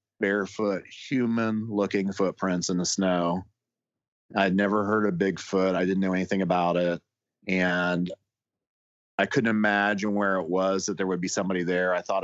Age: 40-59